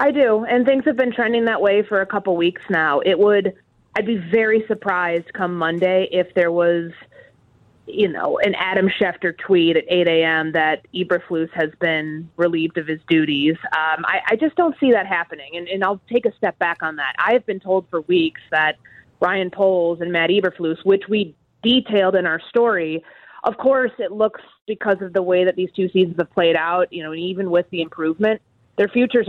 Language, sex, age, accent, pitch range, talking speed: English, female, 30-49, American, 165-210 Hz, 200 wpm